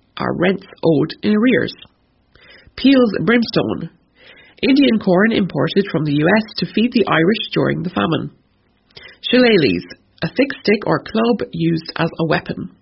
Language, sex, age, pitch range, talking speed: English, female, 30-49, 165-220 Hz, 140 wpm